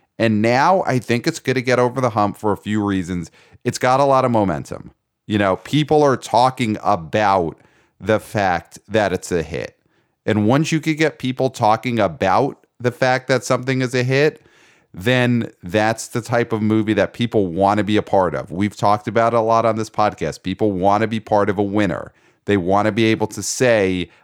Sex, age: male, 30-49